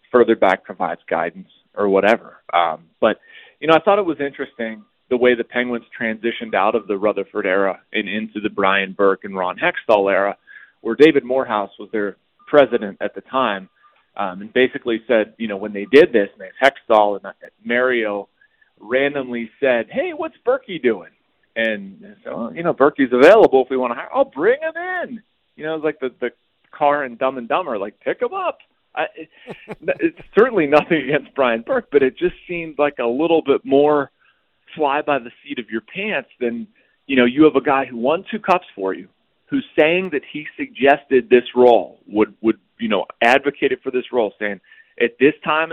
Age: 30-49